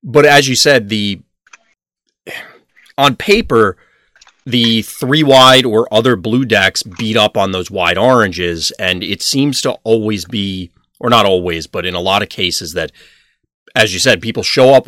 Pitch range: 95-115 Hz